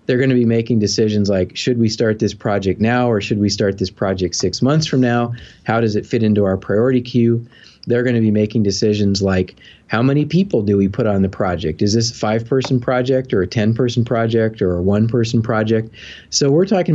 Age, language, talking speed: 40-59, English, 215 wpm